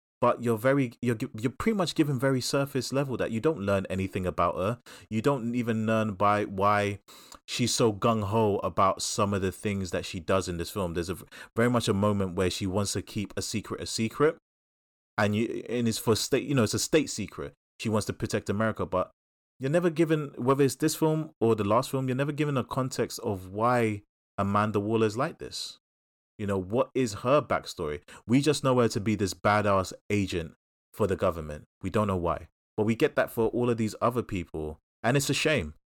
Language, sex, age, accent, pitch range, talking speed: English, male, 30-49, British, 100-120 Hz, 220 wpm